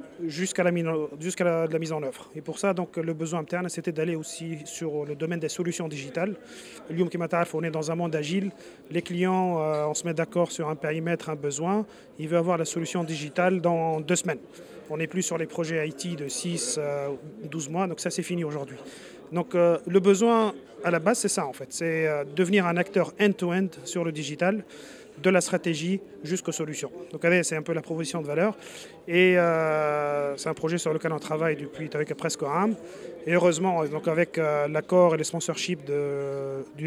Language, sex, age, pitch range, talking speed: Arabic, male, 30-49, 155-175 Hz, 210 wpm